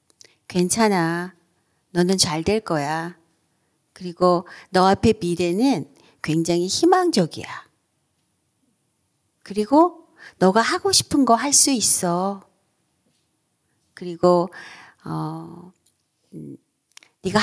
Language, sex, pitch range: Korean, female, 165-240 Hz